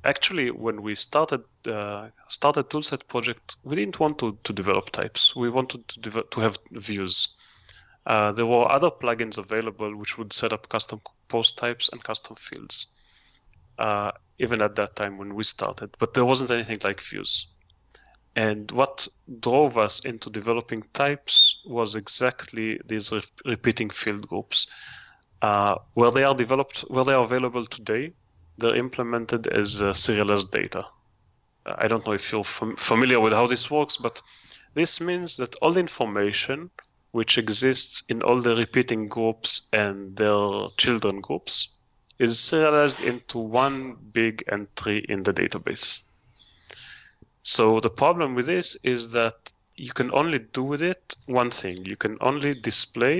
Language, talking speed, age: English, 150 wpm, 30-49